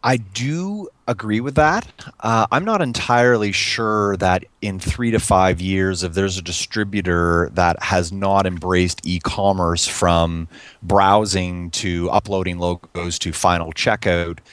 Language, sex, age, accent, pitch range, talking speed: English, male, 30-49, American, 85-105 Hz, 135 wpm